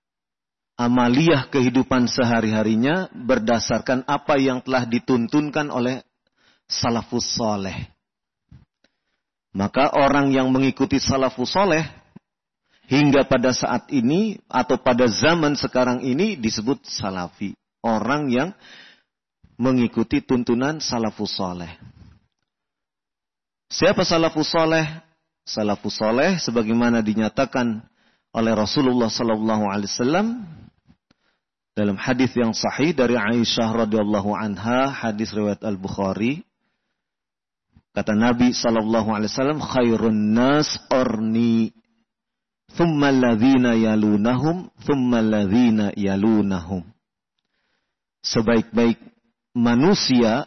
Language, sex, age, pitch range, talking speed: English, male, 40-59, 110-145 Hz, 85 wpm